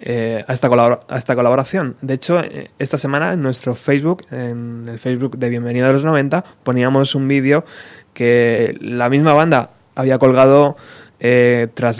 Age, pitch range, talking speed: 20-39, 120-140 Hz, 160 wpm